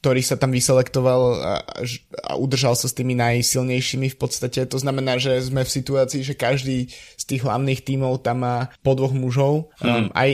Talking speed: 185 wpm